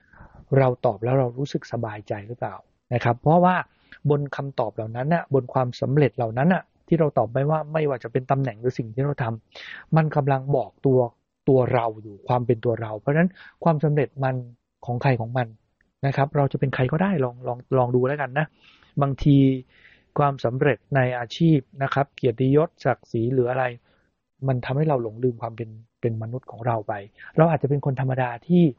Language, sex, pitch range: English, male, 120-145 Hz